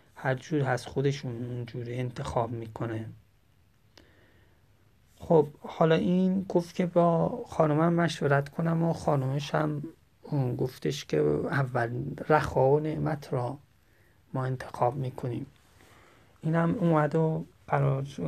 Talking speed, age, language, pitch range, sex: 110 wpm, 30-49, Persian, 125-155 Hz, male